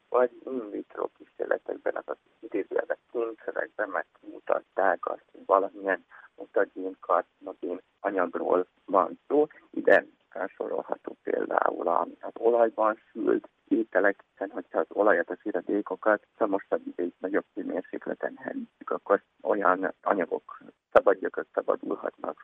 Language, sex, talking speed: Hungarian, male, 100 wpm